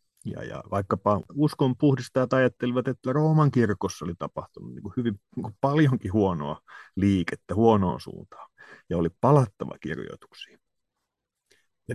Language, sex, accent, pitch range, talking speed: Finnish, male, native, 95-130 Hz, 125 wpm